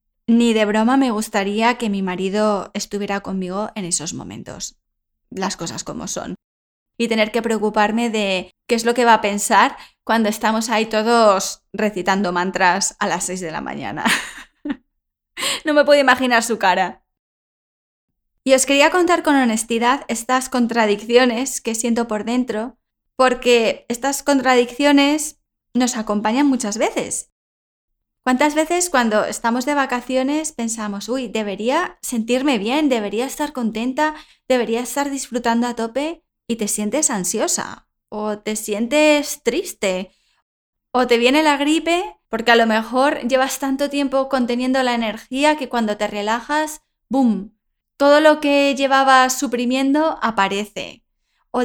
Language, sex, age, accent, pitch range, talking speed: English, female, 10-29, Spanish, 215-275 Hz, 140 wpm